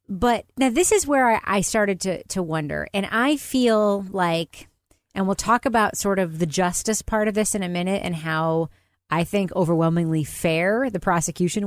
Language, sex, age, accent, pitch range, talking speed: English, female, 30-49, American, 165-210 Hz, 185 wpm